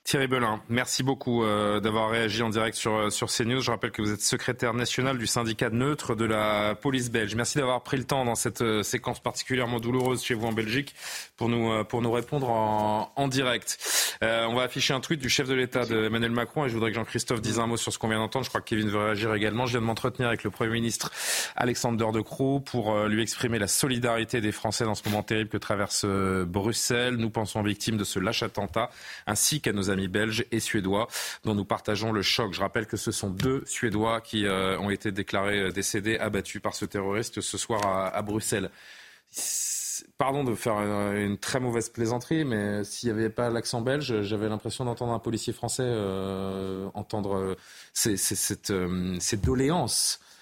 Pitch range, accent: 105-125 Hz, French